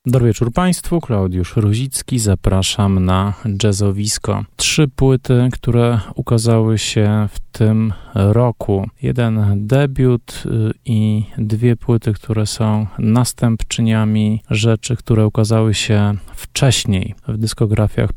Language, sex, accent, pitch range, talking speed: Polish, male, native, 105-120 Hz, 100 wpm